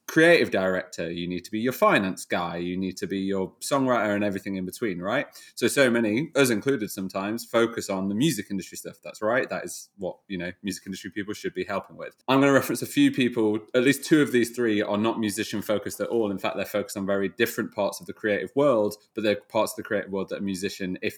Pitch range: 95-115 Hz